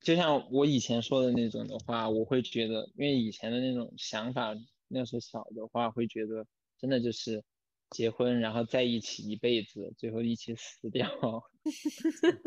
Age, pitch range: 20-39, 115-135 Hz